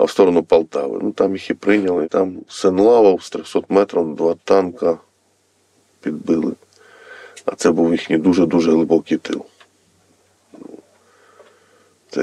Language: Russian